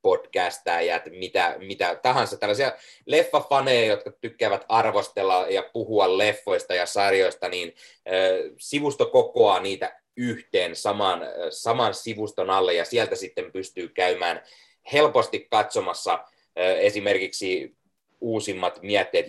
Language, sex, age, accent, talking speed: Finnish, male, 30-49, native, 105 wpm